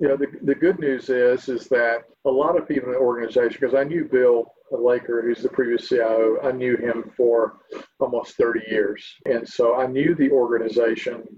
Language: English